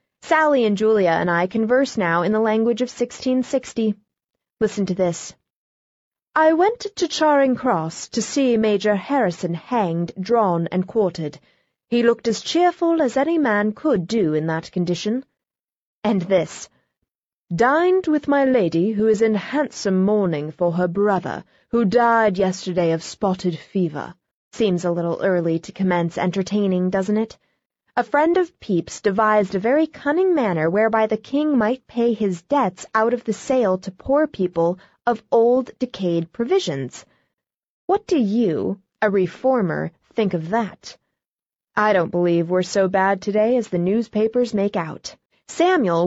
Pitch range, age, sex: 185-250 Hz, 30-49, female